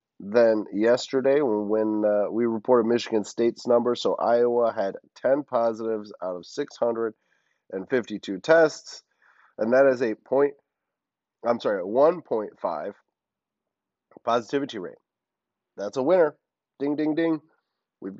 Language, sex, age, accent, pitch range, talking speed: English, male, 30-49, American, 115-140 Hz, 115 wpm